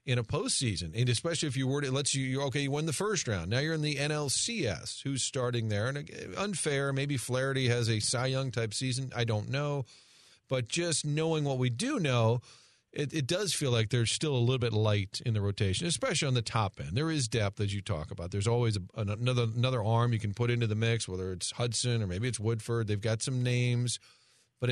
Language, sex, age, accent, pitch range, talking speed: English, male, 40-59, American, 115-150 Hz, 235 wpm